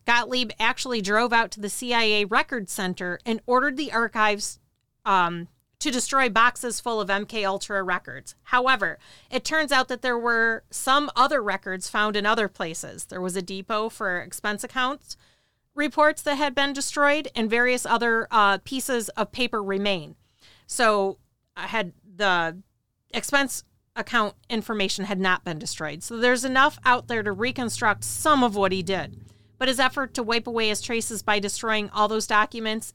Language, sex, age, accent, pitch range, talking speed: English, female, 40-59, American, 200-255 Hz, 165 wpm